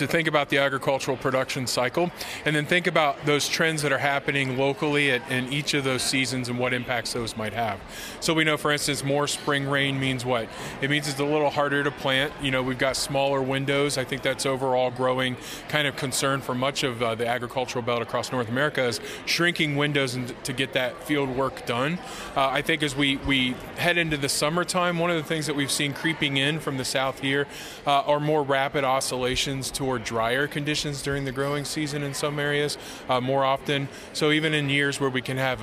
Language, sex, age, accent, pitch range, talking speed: English, male, 20-39, American, 130-150 Hz, 215 wpm